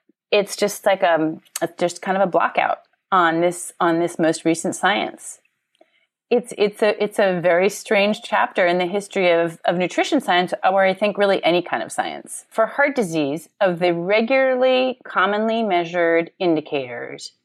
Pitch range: 160-205 Hz